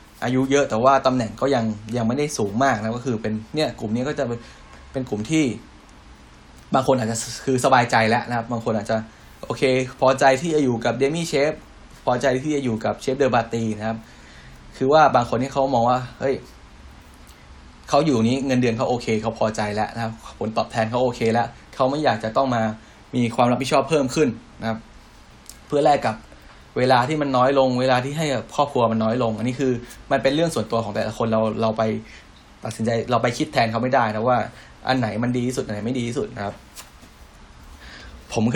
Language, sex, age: Thai, male, 20-39